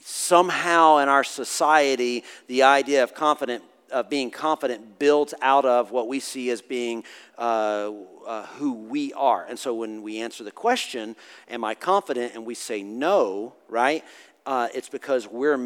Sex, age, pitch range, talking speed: male, 40-59, 115-140 Hz, 165 wpm